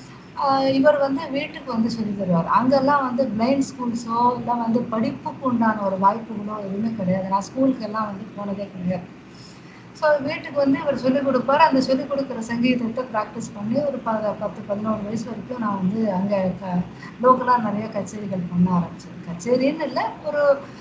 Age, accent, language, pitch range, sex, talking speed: 20-39, native, Tamil, 190-250 Hz, female, 145 wpm